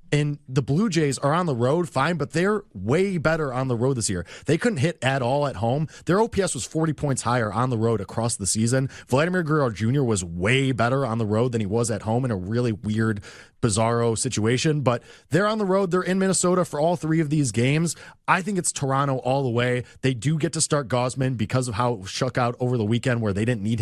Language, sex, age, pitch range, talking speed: English, male, 20-39, 115-155 Hz, 245 wpm